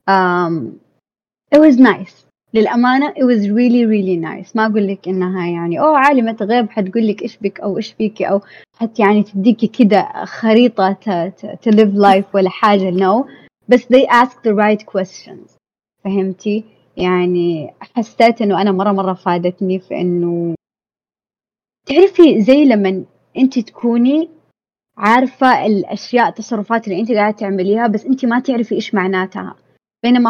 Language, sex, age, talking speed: Arabic, female, 20-39, 145 wpm